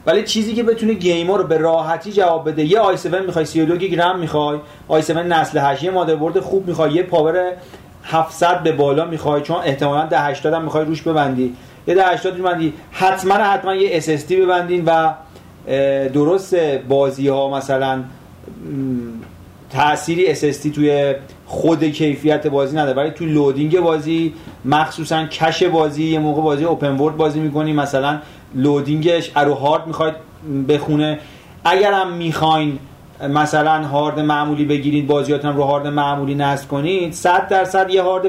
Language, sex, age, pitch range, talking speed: Persian, male, 40-59, 145-175 Hz, 145 wpm